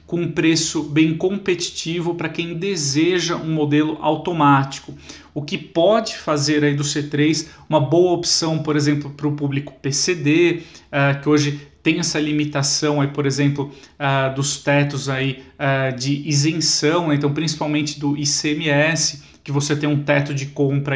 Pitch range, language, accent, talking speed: 140-155 Hz, Portuguese, Brazilian, 155 wpm